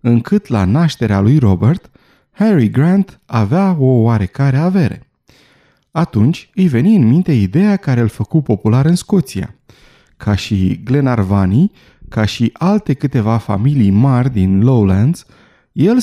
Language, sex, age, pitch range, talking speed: Romanian, male, 30-49, 110-170 Hz, 130 wpm